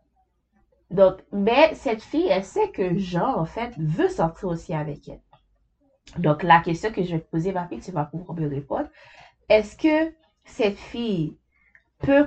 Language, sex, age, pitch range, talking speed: French, female, 30-49, 170-210 Hz, 170 wpm